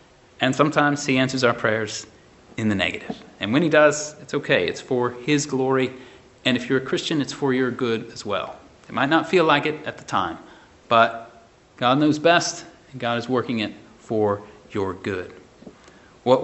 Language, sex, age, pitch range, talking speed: English, male, 30-49, 120-155 Hz, 190 wpm